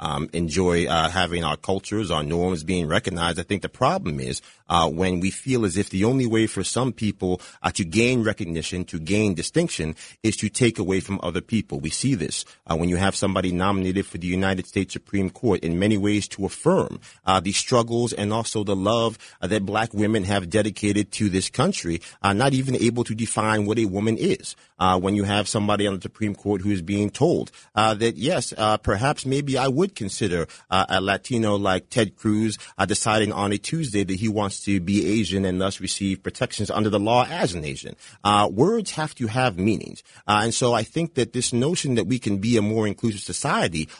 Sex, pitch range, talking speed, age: male, 95-115 Hz, 215 wpm, 30-49